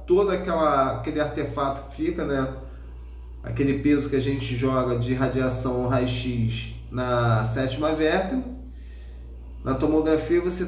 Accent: Brazilian